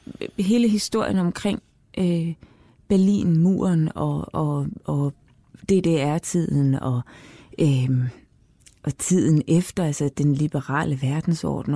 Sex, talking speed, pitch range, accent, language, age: female, 90 wpm, 140-180 Hz, native, Danish, 30-49